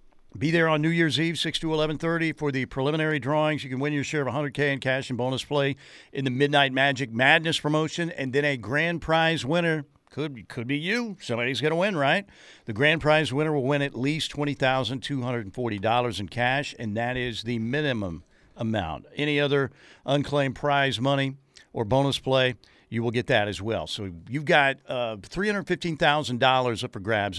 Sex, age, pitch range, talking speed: male, 50-69, 120-150 Hz, 190 wpm